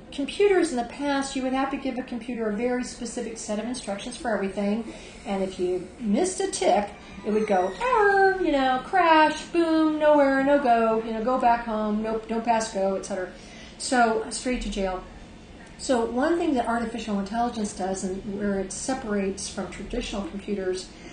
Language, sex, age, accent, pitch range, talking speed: English, female, 40-59, American, 205-255 Hz, 175 wpm